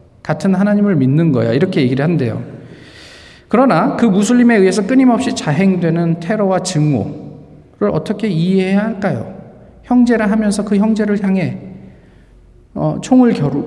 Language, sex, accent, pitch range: Korean, male, native, 140-215 Hz